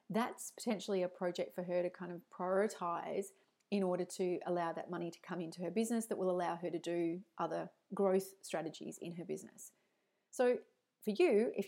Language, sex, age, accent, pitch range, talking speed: English, female, 30-49, Australian, 180-210 Hz, 190 wpm